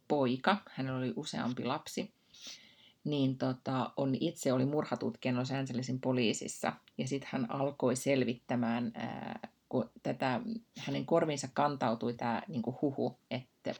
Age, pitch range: 30-49, 125-155 Hz